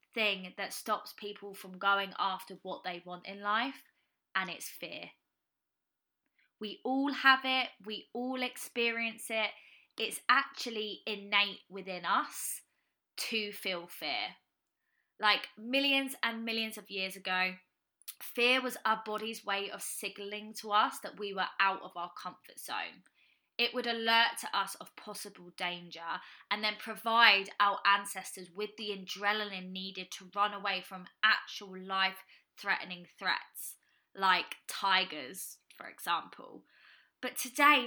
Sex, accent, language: female, British, English